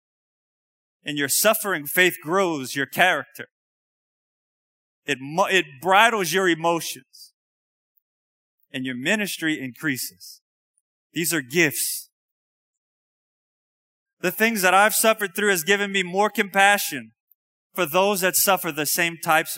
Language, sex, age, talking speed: English, male, 30-49, 115 wpm